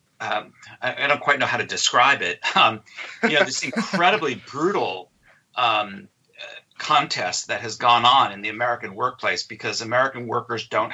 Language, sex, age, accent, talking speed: English, male, 40-59, American, 160 wpm